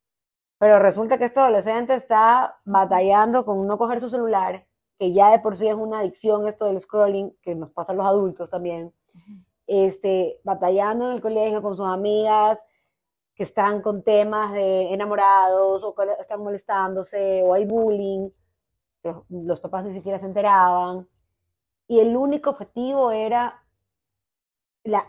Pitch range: 185-225 Hz